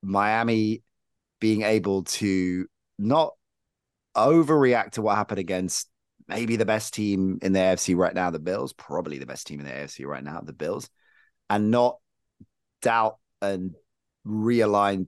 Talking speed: 145 wpm